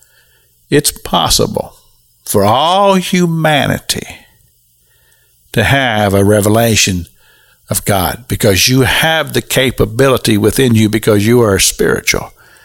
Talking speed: 105 wpm